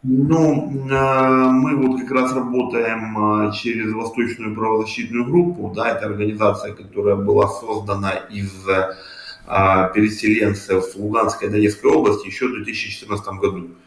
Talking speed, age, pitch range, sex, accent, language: 115 wpm, 20-39, 100-130 Hz, male, native, Russian